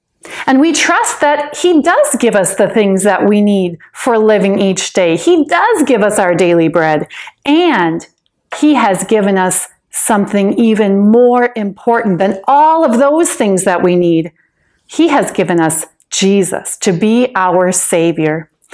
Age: 40-59